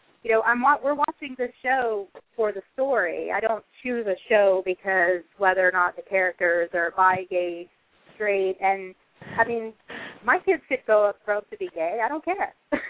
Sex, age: female, 30-49